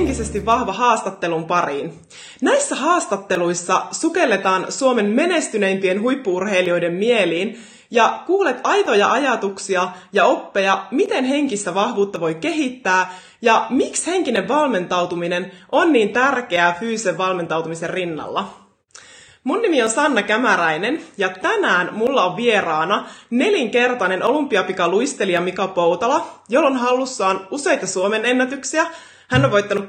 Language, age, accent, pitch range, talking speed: Finnish, 20-39, native, 190-260 Hz, 110 wpm